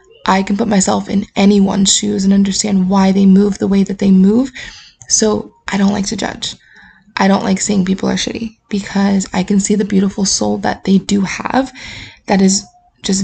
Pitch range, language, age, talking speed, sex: 190-215 Hz, English, 20-39, 200 wpm, female